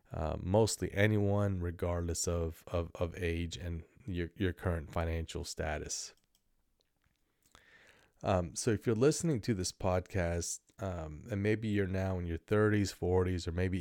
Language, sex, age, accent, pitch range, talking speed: English, male, 30-49, American, 85-95 Hz, 145 wpm